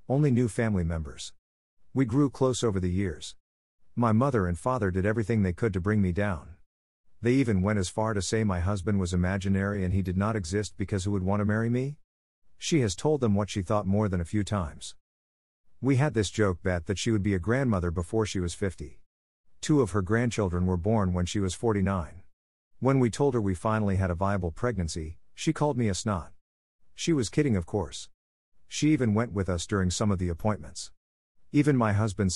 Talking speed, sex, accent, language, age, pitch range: 215 wpm, male, American, English, 50-69, 90-115 Hz